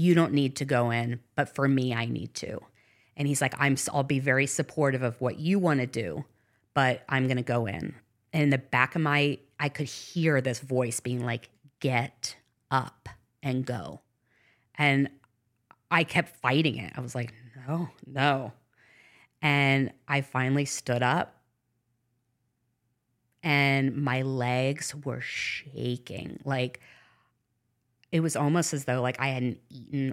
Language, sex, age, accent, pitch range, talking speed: English, female, 30-49, American, 120-145 Hz, 160 wpm